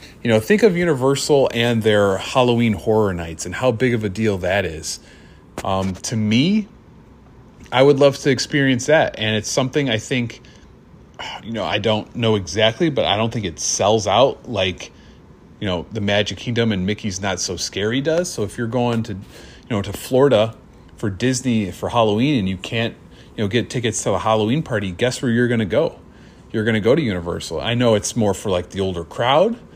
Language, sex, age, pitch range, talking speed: English, male, 30-49, 105-130 Hz, 205 wpm